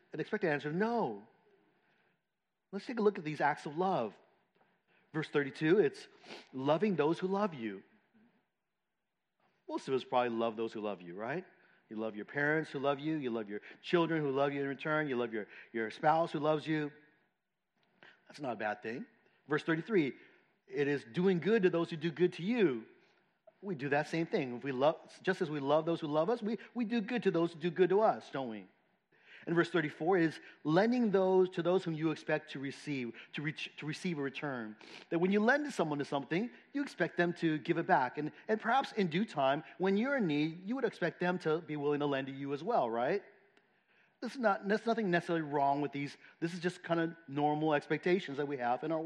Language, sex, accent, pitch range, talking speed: English, male, American, 145-195 Hz, 225 wpm